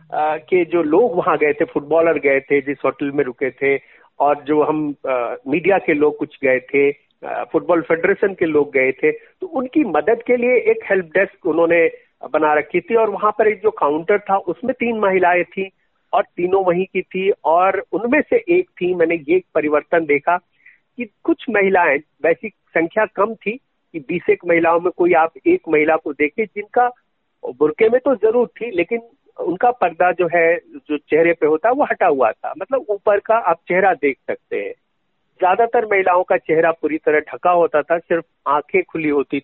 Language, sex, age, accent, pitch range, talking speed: Hindi, male, 50-69, native, 155-225 Hz, 190 wpm